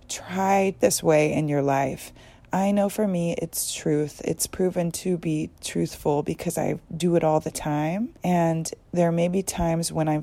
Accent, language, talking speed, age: American, English, 180 wpm, 30-49